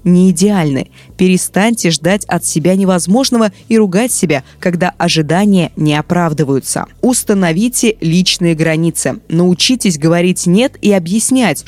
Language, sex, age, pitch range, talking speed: Russian, female, 20-39, 155-205 Hz, 115 wpm